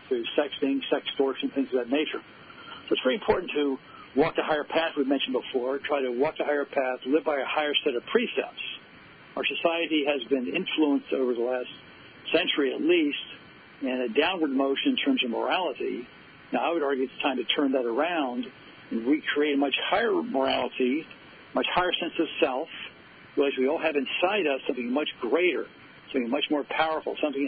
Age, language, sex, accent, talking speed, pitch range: 60-79, English, male, American, 190 wpm, 130-155 Hz